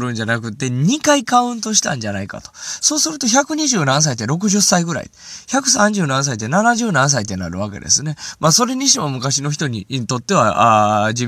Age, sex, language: 20-39, male, Japanese